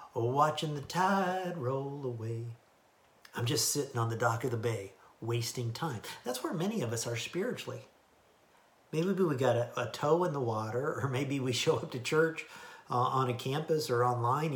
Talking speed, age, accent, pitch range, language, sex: 185 wpm, 50-69, American, 120-165 Hz, English, male